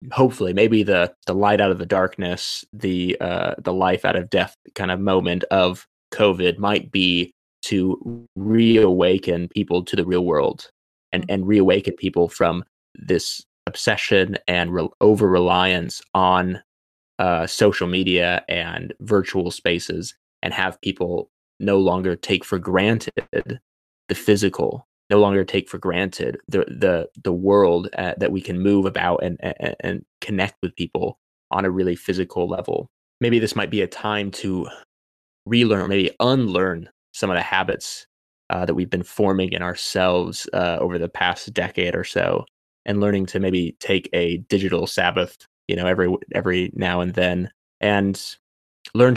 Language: English